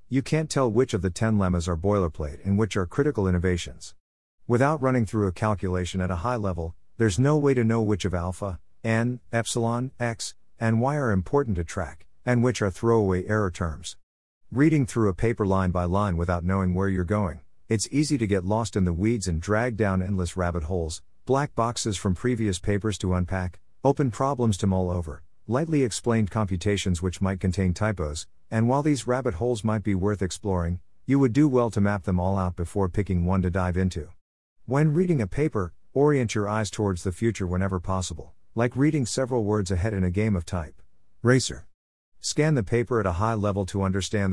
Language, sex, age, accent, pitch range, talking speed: English, male, 50-69, American, 90-120 Hz, 200 wpm